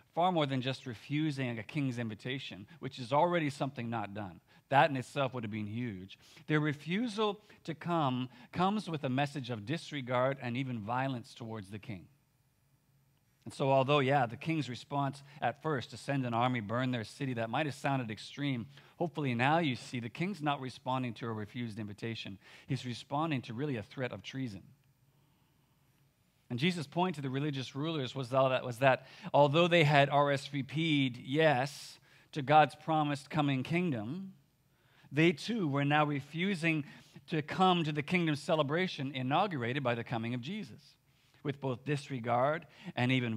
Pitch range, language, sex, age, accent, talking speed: 125-150 Hz, English, male, 40-59, American, 165 wpm